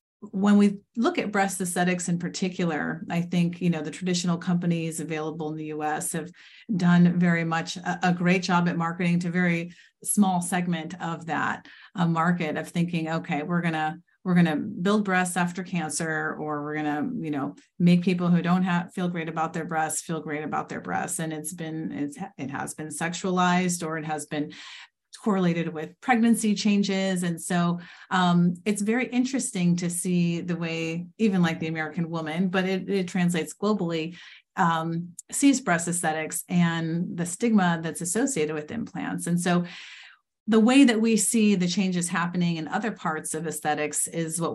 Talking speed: 185 wpm